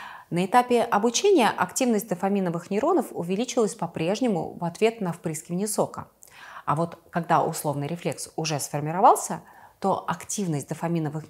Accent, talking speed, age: native, 120 wpm, 30-49